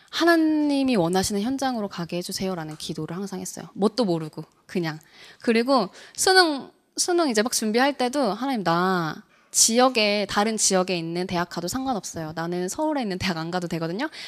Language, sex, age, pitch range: Korean, female, 20-39, 185-265 Hz